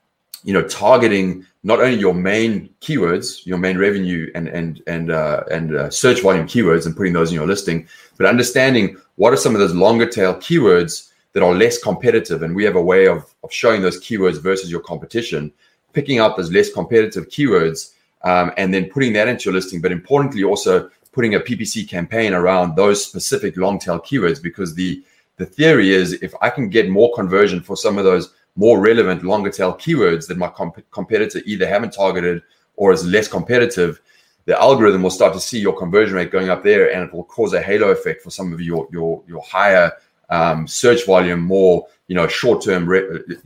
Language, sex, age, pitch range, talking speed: English, male, 30-49, 85-115 Hz, 205 wpm